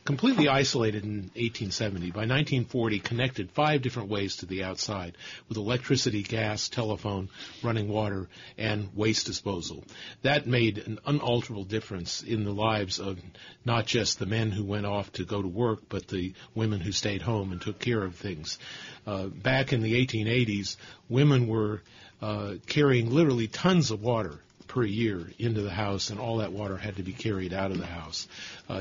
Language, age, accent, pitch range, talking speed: English, 40-59, American, 95-120 Hz, 175 wpm